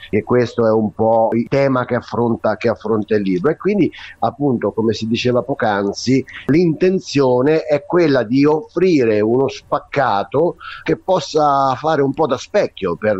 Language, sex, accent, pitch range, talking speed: Italian, male, native, 110-150 Hz, 155 wpm